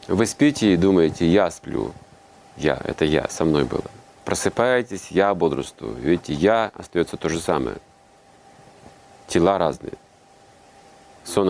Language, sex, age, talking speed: Russian, male, 30-49, 125 wpm